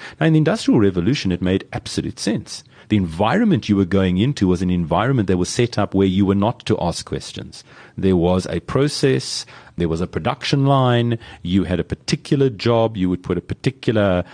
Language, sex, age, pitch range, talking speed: English, male, 40-59, 95-120 Hz, 200 wpm